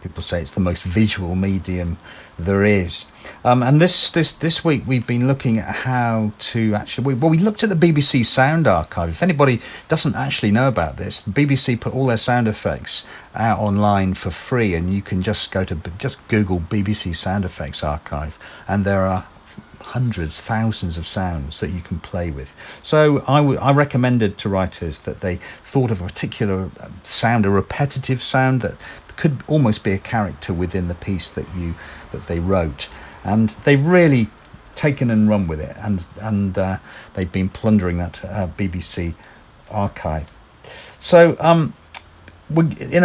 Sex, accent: male, British